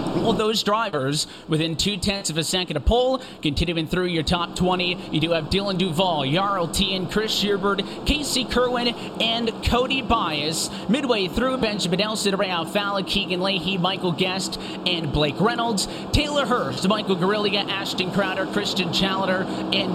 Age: 20-39